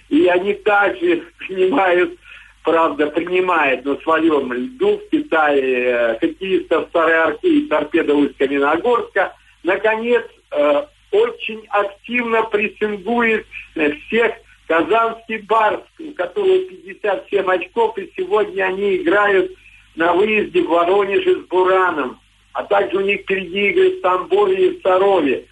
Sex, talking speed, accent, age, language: male, 120 wpm, native, 50-69, Russian